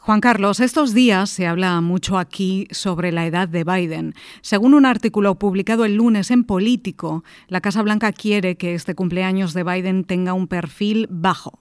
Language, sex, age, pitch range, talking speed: Spanish, female, 30-49, 185-225 Hz, 175 wpm